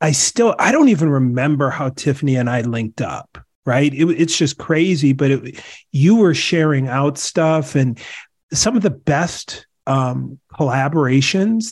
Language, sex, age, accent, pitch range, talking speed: English, male, 40-59, American, 130-150 Hz, 160 wpm